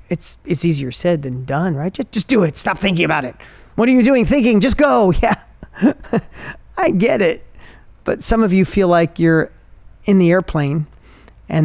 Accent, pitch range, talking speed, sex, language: American, 155-230 Hz, 190 wpm, male, English